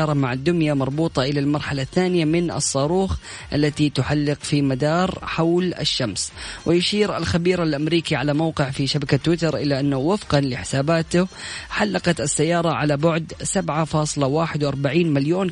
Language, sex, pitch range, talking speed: Arabic, female, 140-170 Hz, 125 wpm